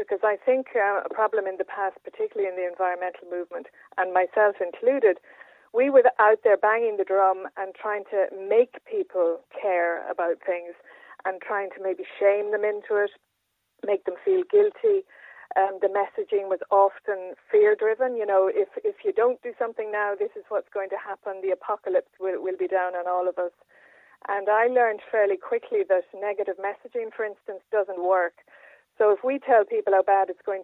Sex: female